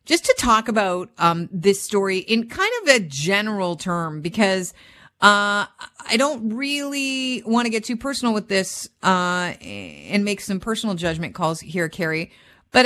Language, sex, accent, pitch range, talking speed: English, female, American, 160-200 Hz, 165 wpm